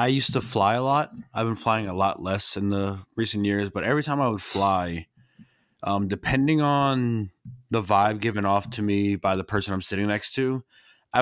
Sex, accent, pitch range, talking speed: male, American, 95-120 Hz, 210 wpm